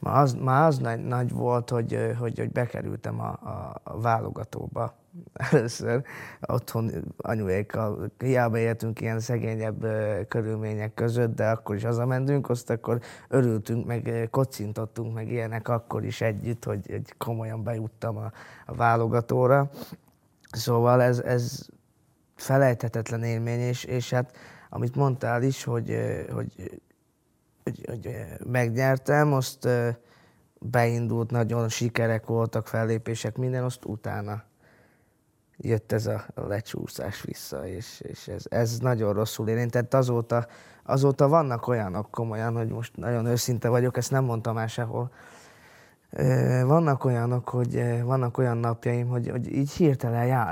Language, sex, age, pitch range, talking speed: Hungarian, male, 20-39, 115-125 Hz, 120 wpm